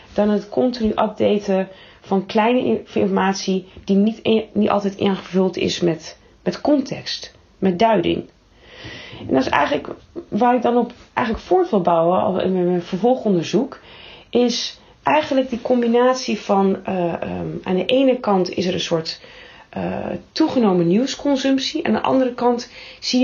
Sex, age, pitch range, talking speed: female, 40-59, 185-245 Hz, 145 wpm